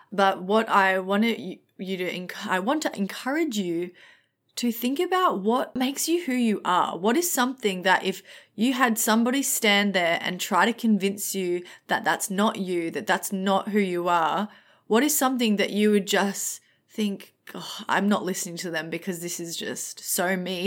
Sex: female